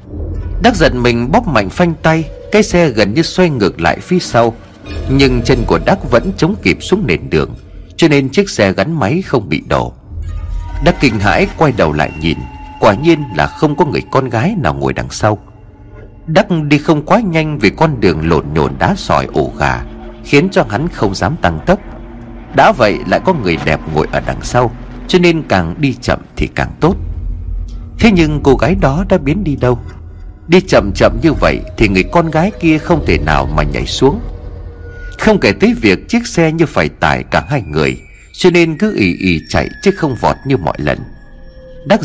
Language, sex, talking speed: Vietnamese, male, 205 wpm